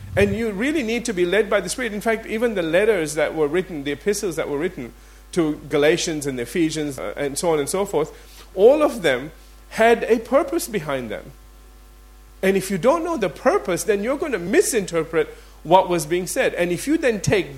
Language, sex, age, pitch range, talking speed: English, male, 40-59, 160-235 Hz, 210 wpm